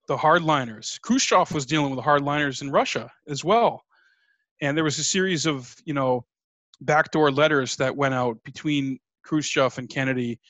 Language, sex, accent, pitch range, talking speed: English, male, American, 135-160 Hz, 160 wpm